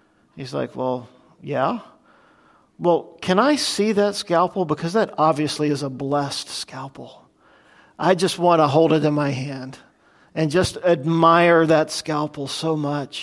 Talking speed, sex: 150 wpm, male